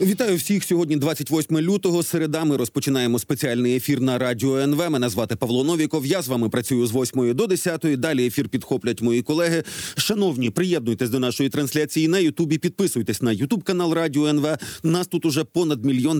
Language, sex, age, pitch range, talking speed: Ukrainian, male, 40-59, 130-170 Hz, 175 wpm